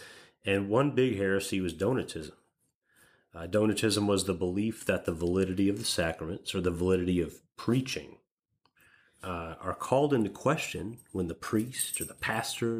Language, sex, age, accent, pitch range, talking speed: English, male, 30-49, American, 85-105 Hz, 150 wpm